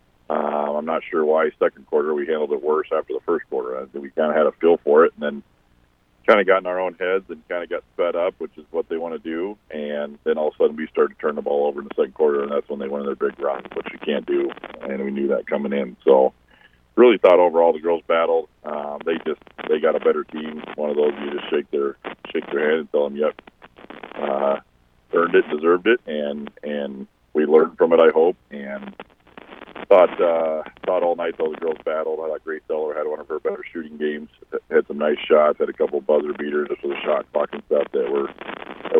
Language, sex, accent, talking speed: English, male, American, 250 wpm